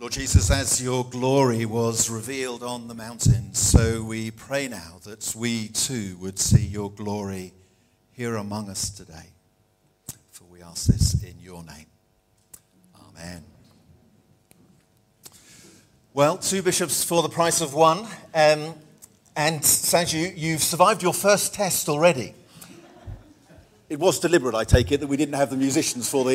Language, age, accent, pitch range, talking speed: English, 50-69, British, 105-145 Hz, 145 wpm